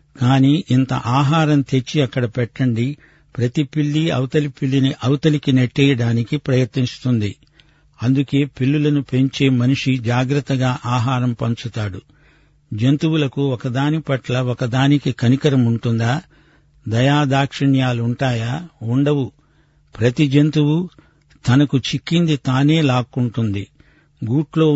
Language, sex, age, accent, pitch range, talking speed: Telugu, male, 50-69, native, 125-145 Hz, 85 wpm